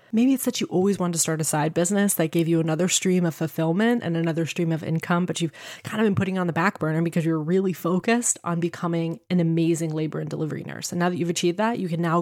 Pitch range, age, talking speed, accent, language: 165-200 Hz, 20-39, 265 wpm, American, English